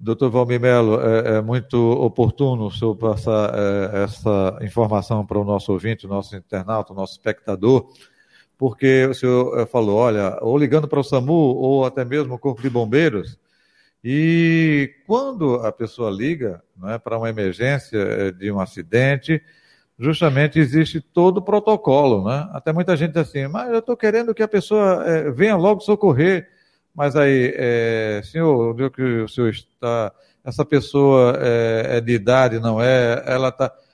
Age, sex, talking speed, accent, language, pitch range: 50-69, male, 155 wpm, Brazilian, Portuguese, 115-165 Hz